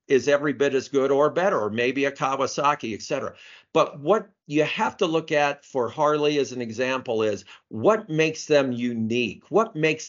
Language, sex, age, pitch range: English, male, 50-69, 115-150 Hz